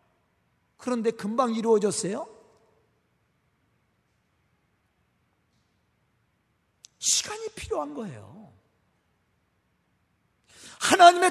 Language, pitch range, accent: Korean, 225-345 Hz, native